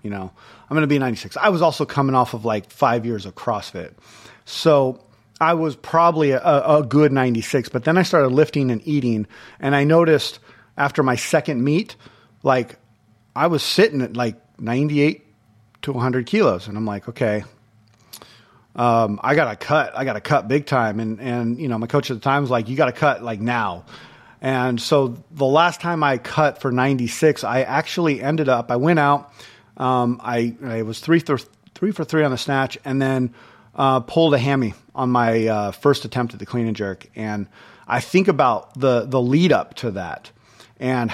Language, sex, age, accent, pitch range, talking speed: English, male, 30-49, American, 115-155 Hz, 200 wpm